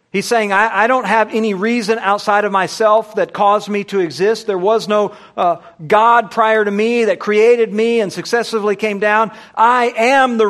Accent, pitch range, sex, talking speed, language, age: American, 200-240 Hz, male, 195 wpm, English, 50-69